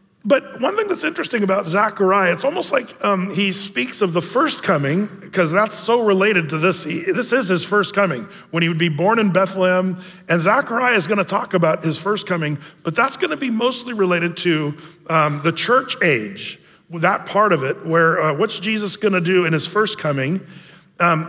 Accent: American